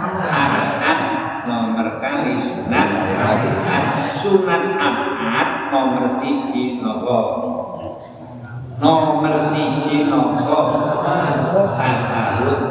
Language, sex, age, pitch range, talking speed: Indonesian, male, 50-69, 120-165 Hz, 70 wpm